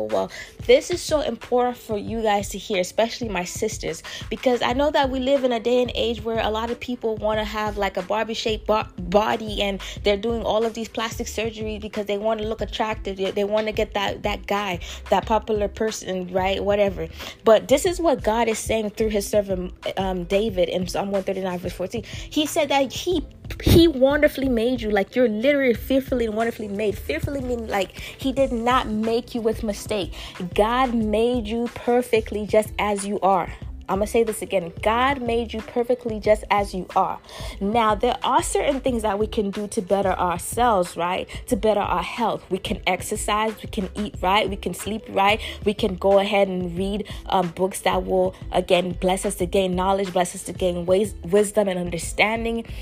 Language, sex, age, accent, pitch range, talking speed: English, female, 20-39, American, 195-240 Hz, 200 wpm